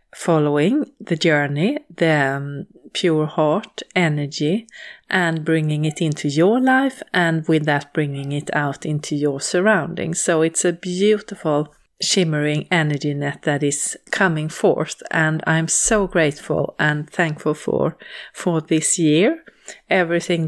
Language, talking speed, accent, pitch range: English, 130 wpm, Swedish, 150-185 Hz